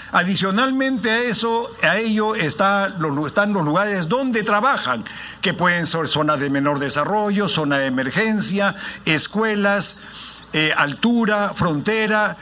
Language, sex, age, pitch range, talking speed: Spanish, male, 50-69, 150-205 Hz, 115 wpm